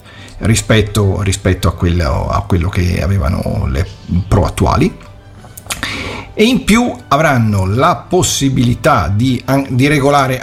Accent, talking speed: native, 115 wpm